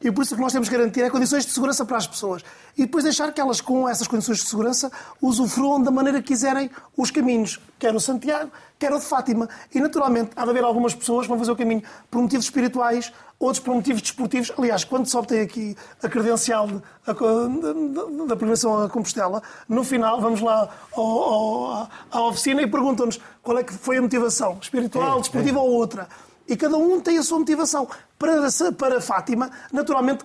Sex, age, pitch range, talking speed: male, 30-49, 230-275 Hz, 195 wpm